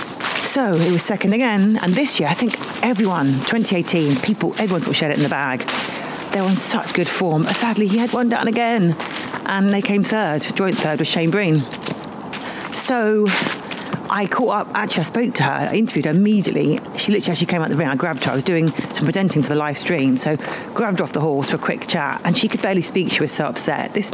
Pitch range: 160-210 Hz